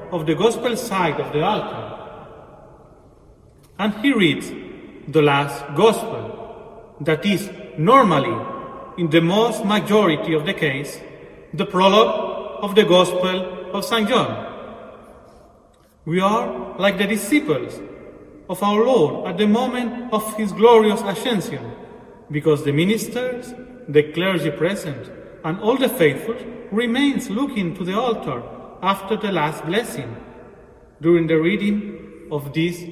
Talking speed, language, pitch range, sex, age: 130 wpm, English, 160-220 Hz, male, 40-59